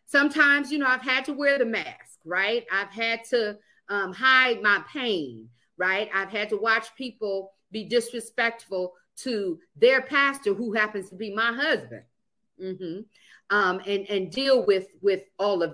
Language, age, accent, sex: English, 40-59, American, female